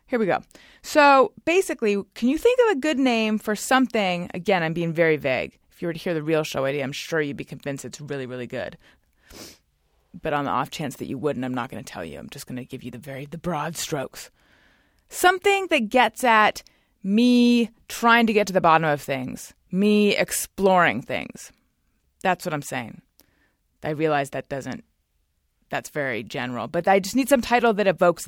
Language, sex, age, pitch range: English, female, 30-49, 145-220 Hz